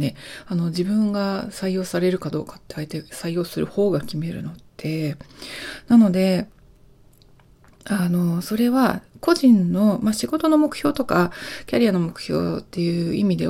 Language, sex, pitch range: Japanese, female, 170-235 Hz